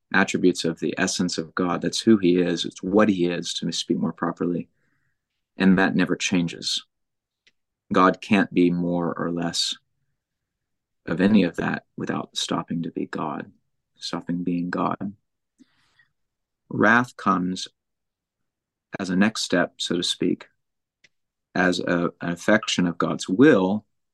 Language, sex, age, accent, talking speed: English, male, 30-49, American, 135 wpm